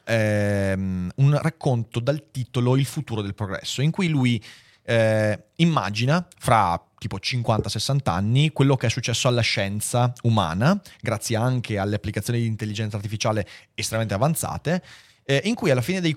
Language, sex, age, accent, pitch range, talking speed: Italian, male, 30-49, native, 110-150 Hz, 150 wpm